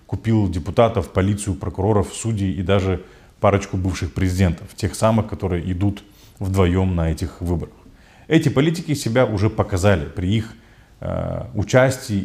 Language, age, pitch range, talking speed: Russian, 30-49, 90-110 Hz, 130 wpm